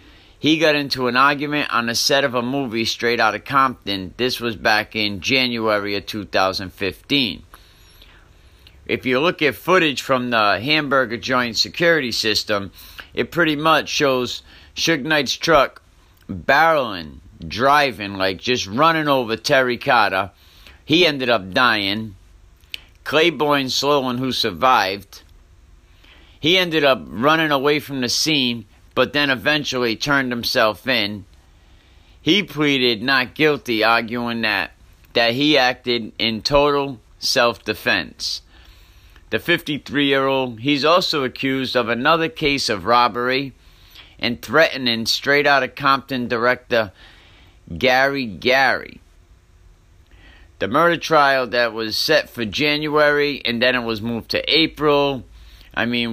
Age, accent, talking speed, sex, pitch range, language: 50-69, American, 125 wpm, male, 95-140 Hz, English